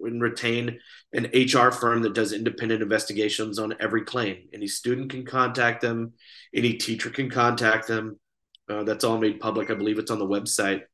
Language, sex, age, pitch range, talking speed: English, male, 30-49, 115-140 Hz, 180 wpm